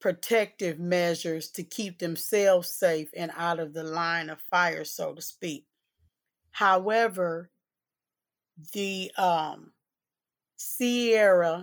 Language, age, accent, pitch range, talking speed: English, 30-49, American, 170-200 Hz, 105 wpm